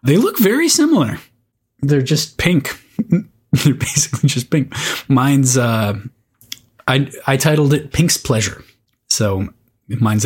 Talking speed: 125 wpm